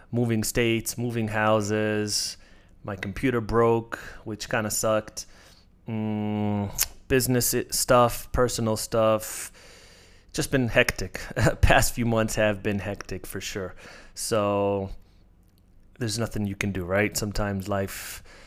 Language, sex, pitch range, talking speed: English, male, 100-115 Hz, 115 wpm